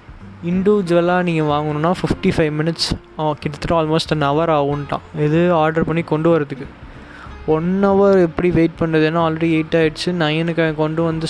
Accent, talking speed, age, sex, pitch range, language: native, 150 wpm, 20-39, male, 145-165 Hz, Tamil